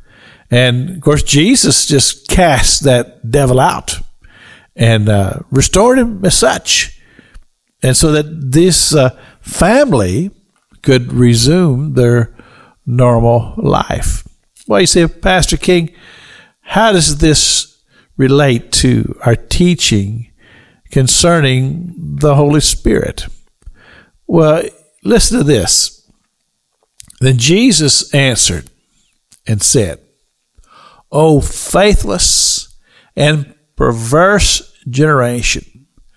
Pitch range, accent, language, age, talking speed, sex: 120-170 Hz, American, English, 50-69, 95 wpm, male